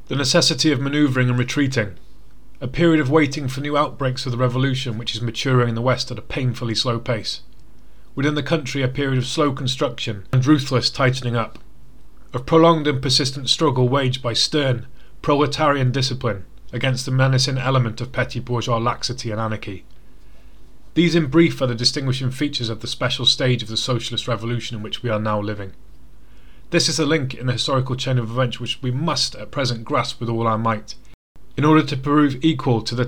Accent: British